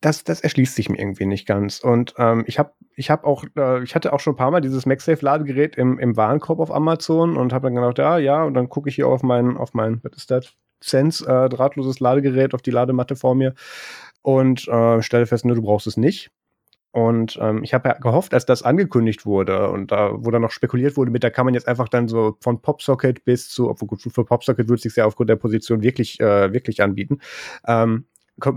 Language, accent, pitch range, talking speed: German, German, 115-135 Hz, 235 wpm